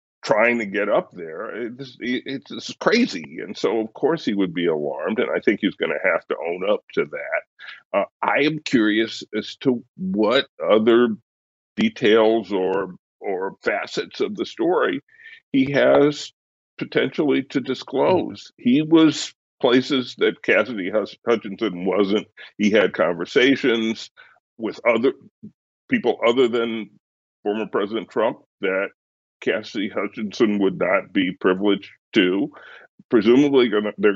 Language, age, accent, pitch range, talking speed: English, 50-69, American, 105-145 Hz, 140 wpm